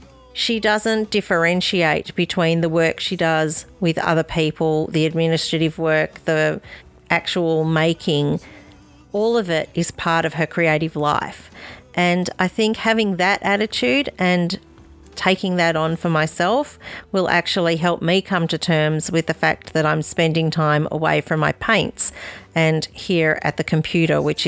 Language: English